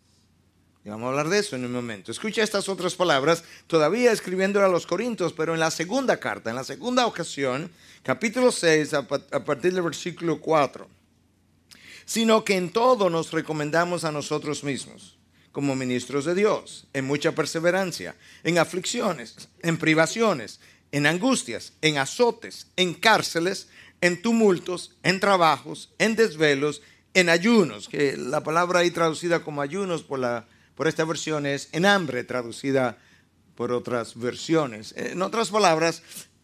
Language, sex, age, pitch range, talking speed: Spanish, male, 50-69, 125-185 Hz, 150 wpm